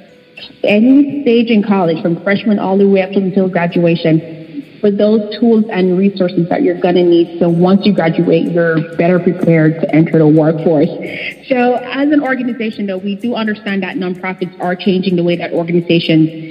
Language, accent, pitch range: English, American, 170-200 Hz